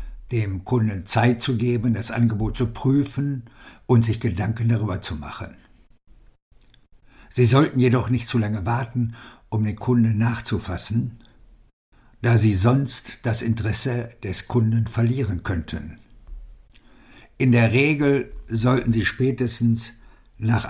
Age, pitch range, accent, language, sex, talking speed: 60-79, 110-125 Hz, German, German, male, 120 wpm